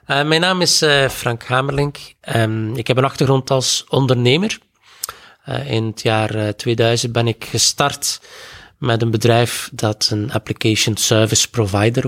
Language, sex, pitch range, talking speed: Dutch, male, 105-130 Hz, 155 wpm